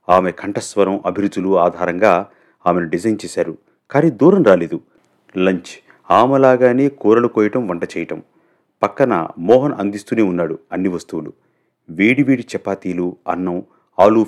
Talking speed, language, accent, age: 115 wpm, Telugu, native, 30-49